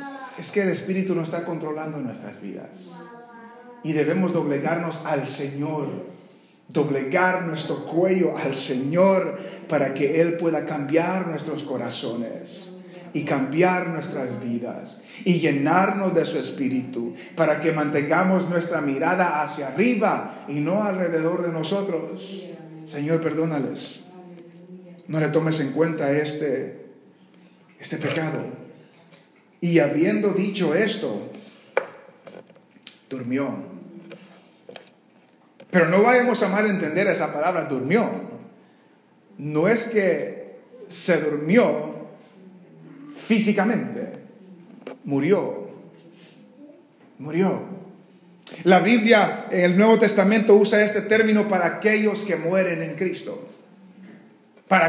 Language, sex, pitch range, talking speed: English, male, 155-210 Hz, 105 wpm